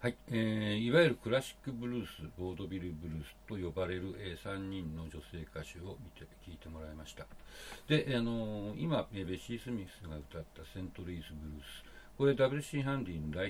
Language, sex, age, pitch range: Japanese, male, 60-79, 80-120 Hz